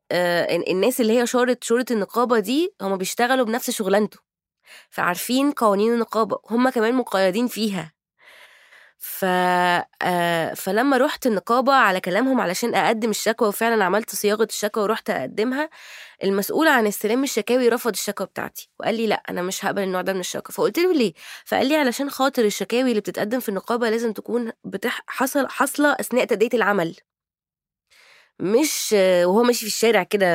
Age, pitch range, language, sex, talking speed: 20-39, 200-250 Hz, Arabic, female, 150 wpm